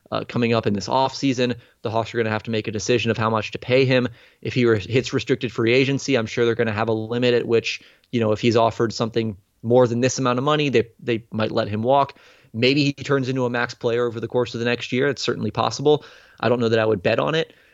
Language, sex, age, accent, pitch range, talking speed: English, male, 20-39, American, 115-130 Hz, 275 wpm